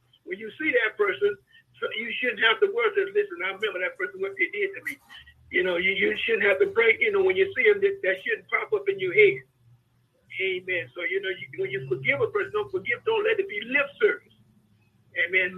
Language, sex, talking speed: English, male, 245 wpm